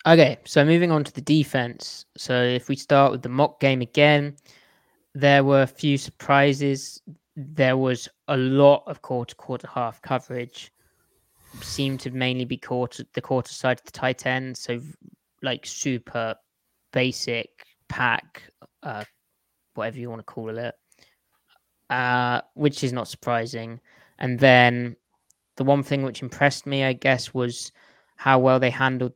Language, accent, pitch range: English, British, 125-140 Hz